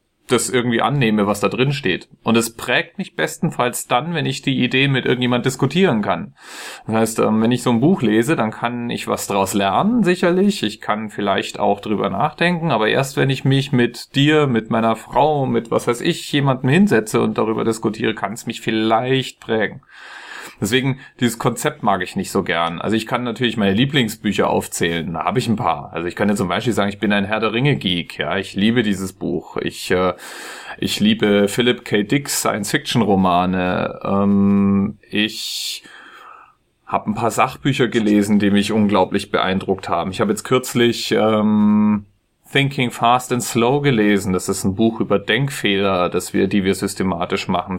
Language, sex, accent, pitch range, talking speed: German, male, German, 100-125 Hz, 180 wpm